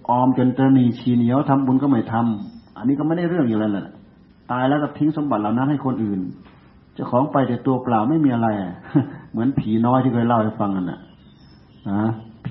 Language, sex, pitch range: Thai, male, 110-140 Hz